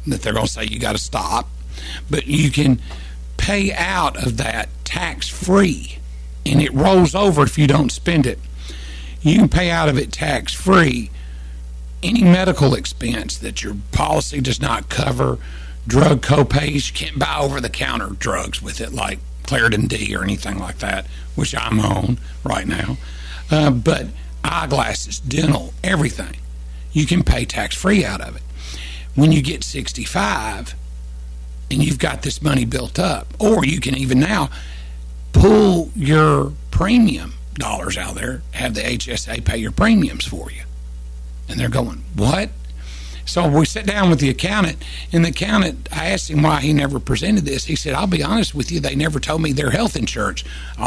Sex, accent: male, American